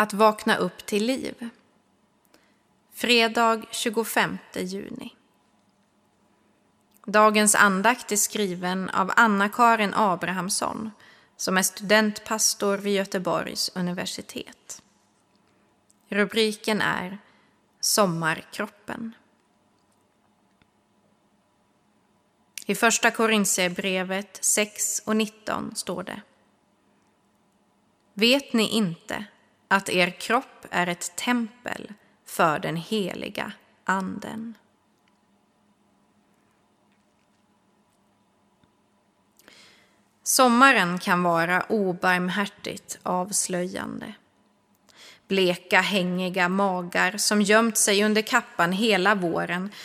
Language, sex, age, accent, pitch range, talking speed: Swedish, female, 20-39, native, 185-225 Hz, 70 wpm